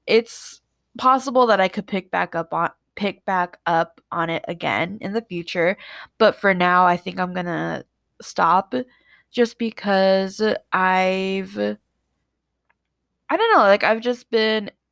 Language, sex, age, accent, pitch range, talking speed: English, female, 10-29, American, 180-220 Hz, 145 wpm